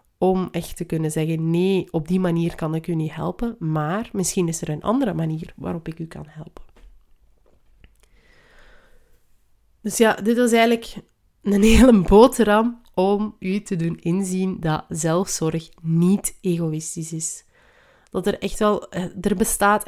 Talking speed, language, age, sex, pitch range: 150 wpm, Dutch, 30-49, female, 165-210 Hz